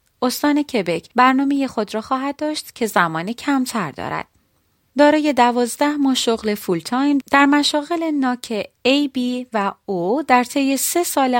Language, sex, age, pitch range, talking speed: Persian, female, 30-49, 200-275 Hz, 140 wpm